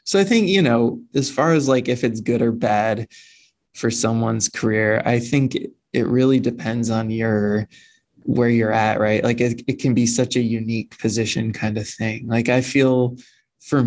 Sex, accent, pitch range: male, American, 110-125 Hz